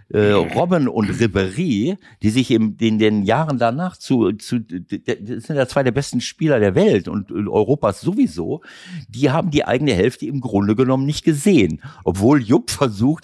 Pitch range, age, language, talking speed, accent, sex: 100-135 Hz, 60-79, German, 165 wpm, German, male